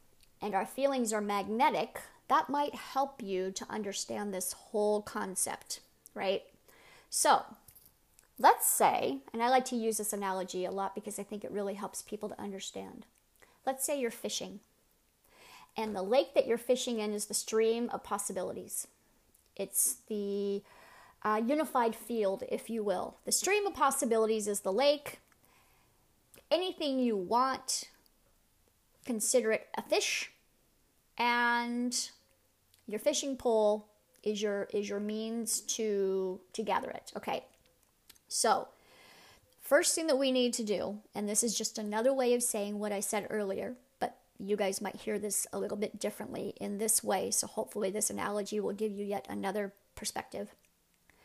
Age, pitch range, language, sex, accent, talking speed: 40-59, 205-255 Hz, English, female, American, 155 wpm